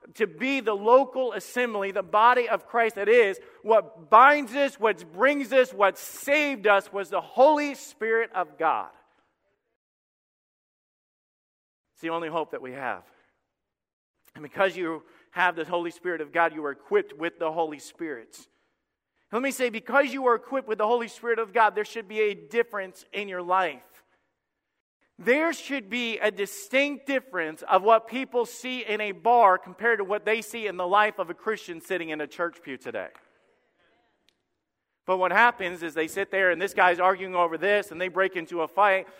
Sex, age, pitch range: male, 50-69, 185-245 Hz